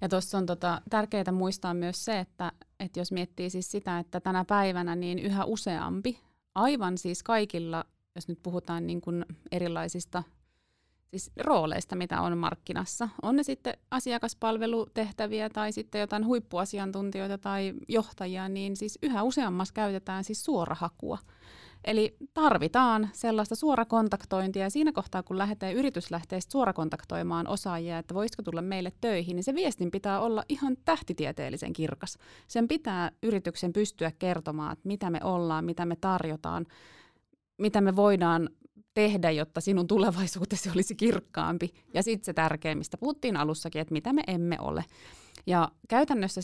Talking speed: 145 wpm